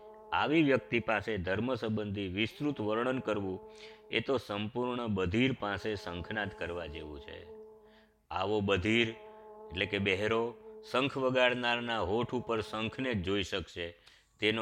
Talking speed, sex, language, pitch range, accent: 105 wpm, male, Gujarati, 100-130 Hz, native